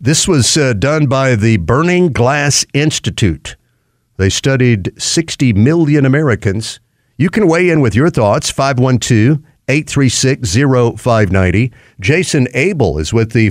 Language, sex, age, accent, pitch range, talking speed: English, male, 50-69, American, 115-140 Hz, 115 wpm